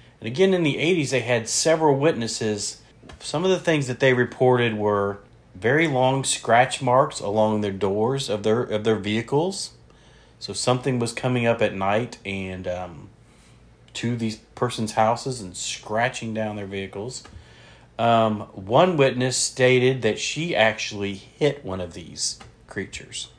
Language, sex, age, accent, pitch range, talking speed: English, male, 40-59, American, 105-125 Hz, 150 wpm